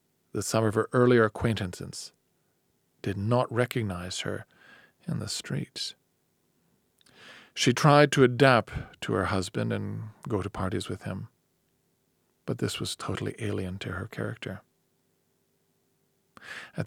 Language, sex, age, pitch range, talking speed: Hungarian, male, 40-59, 100-120 Hz, 125 wpm